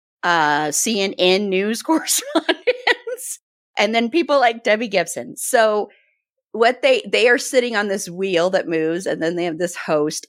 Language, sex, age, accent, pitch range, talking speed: English, female, 30-49, American, 170-275 Hz, 155 wpm